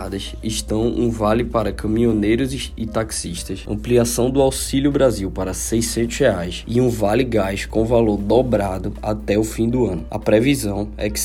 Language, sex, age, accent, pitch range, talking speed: Portuguese, male, 20-39, Brazilian, 105-120 Hz, 155 wpm